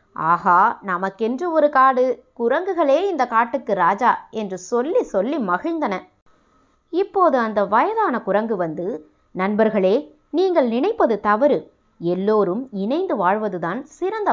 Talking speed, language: 105 wpm, Tamil